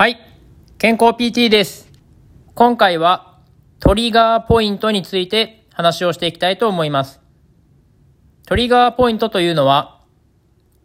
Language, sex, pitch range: Japanese, male, 130-225 Hz